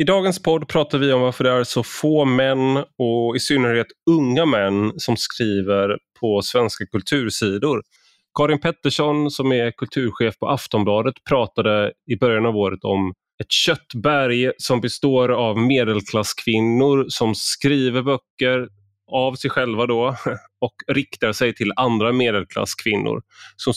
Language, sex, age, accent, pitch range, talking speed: Swedish, male, 30-49, native, 115-140 Hz, 140 wpm